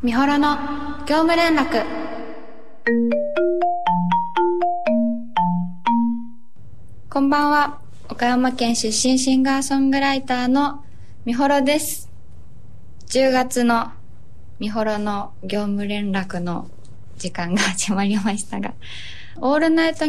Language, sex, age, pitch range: Japanese, female, 20-39, 195-255 Hz